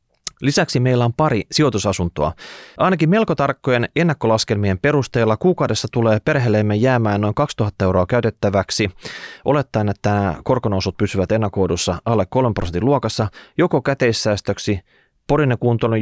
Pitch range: 95-135 Hz